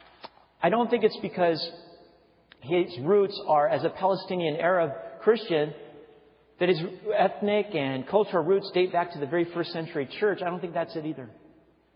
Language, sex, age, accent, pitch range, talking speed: English, male, 40-59, American, 160-225 Hz, 165 wpm